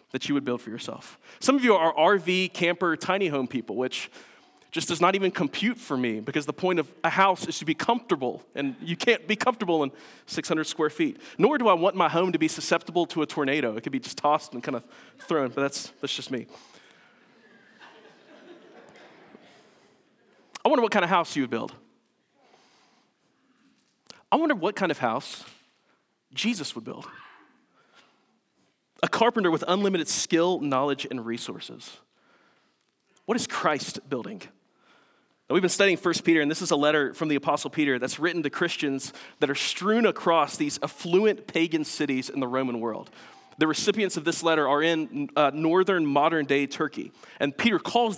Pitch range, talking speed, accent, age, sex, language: 150-195 Hz, 180 wpm, American, 30-49, male, English